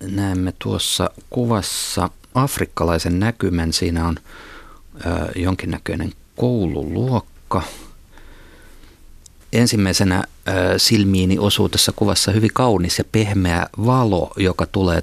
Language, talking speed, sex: Finnish, 85 wpm, male